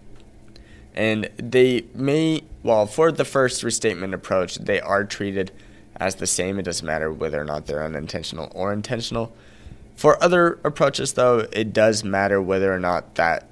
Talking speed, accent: 160 wpm, American